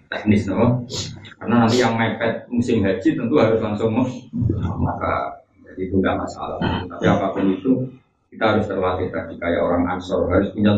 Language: Indonesian